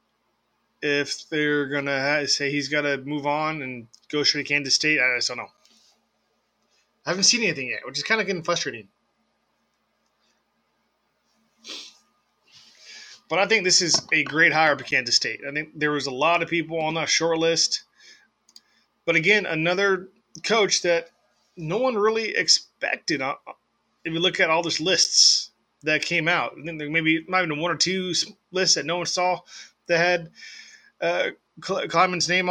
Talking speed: 160 wpm